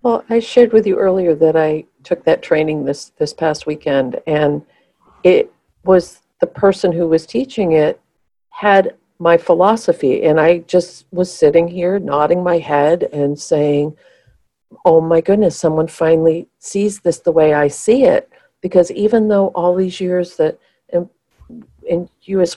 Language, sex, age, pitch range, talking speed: English, female, 50-69, 145-185 Hz, 160 wpm